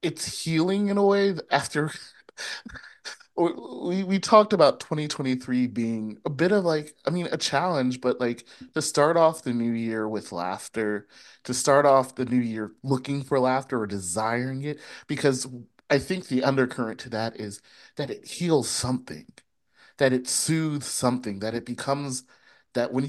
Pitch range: 110-145 Hz